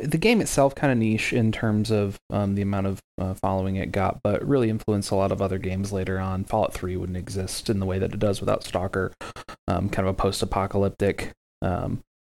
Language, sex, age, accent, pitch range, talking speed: English, male, 30-49, American, 95-110 Hz, 220 wpm